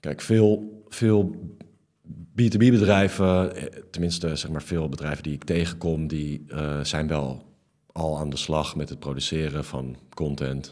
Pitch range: 75-90 Hz